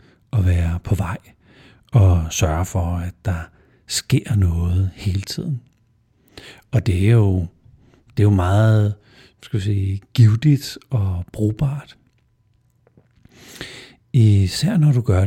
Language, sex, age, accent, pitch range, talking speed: Danish, male, 60-79, native, 95-120 Hz, 110 wpm